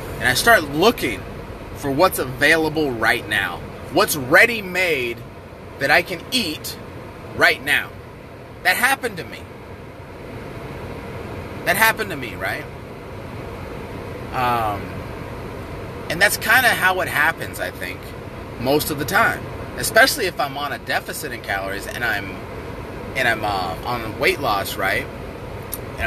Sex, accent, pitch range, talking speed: male, American, 110-145 Hz, 135 wpm